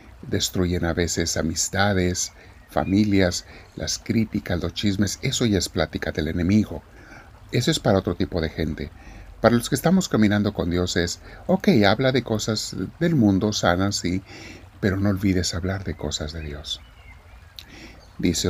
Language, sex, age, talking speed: Spanish, male, 60-79, 150 wpm